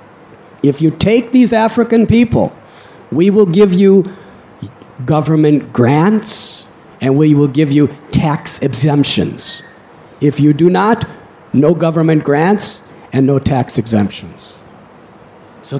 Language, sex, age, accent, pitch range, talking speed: English, male, 50-69, American, 140-185 Hz, 120 wpm